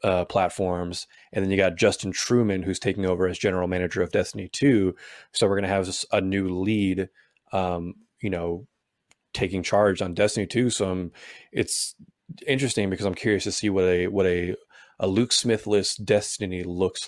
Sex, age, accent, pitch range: male, 20-39, American, 90-105 Hz